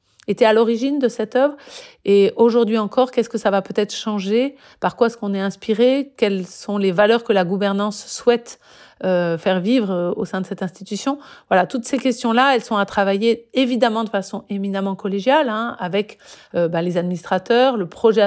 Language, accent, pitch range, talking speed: French, French, 195-250 Hz, 195 wpm